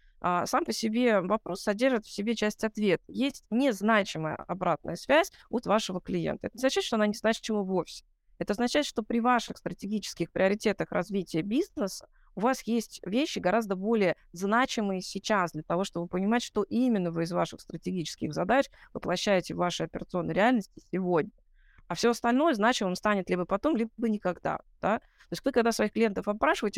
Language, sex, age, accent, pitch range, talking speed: Russian, female, 20-39, native, 180-225 Hz, 170 wpm